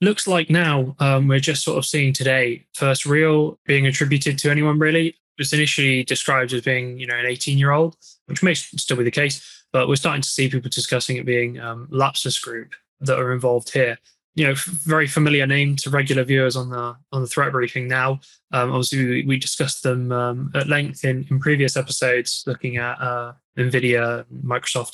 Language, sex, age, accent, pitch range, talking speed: English, male, 10-29, British, 130-150 Hz, 200 wpm